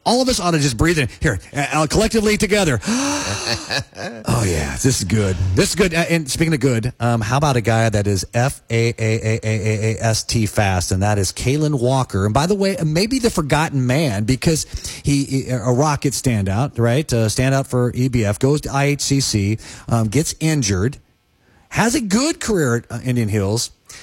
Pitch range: 110-145 Hz